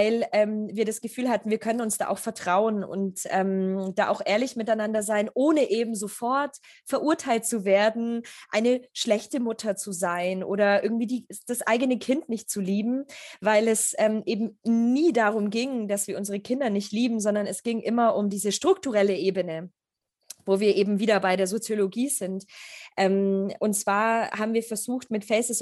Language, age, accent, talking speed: German, 20-39, German, 180 wpm